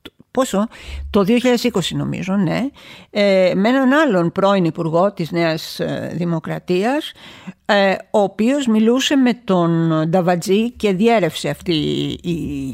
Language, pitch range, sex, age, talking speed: Greek, 180-255 Hz, female, 50-69, 120 wpm